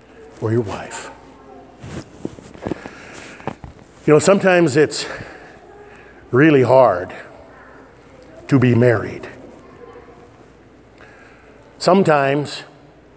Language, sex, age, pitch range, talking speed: English, male, 50-69, 125-155 Hz, 60 wpm